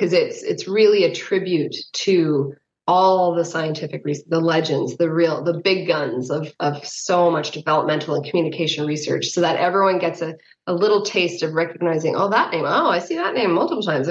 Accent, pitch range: American, 160-195 Hz